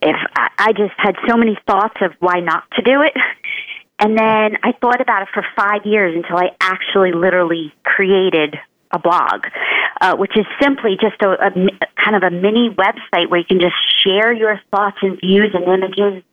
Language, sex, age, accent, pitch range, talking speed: English, female, 40-59, American, 190-225 Hz, 190 wpm